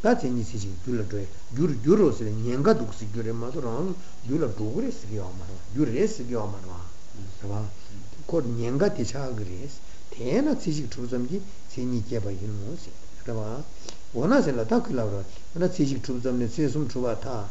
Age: 60-79